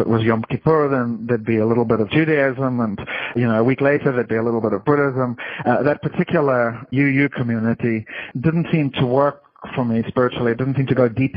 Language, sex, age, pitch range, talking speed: English, male, 40-59, 115-140 Hz, 225 wpm